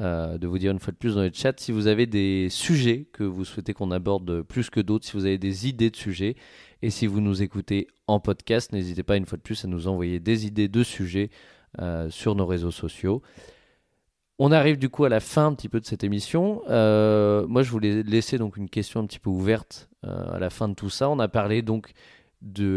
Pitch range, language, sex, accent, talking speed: 95-115 Hz, French, male, French, 245 wpm